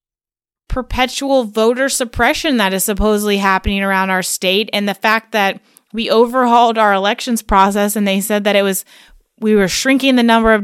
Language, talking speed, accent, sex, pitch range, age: English, 175 wpm, American, female, 180-230 Hz, 20-39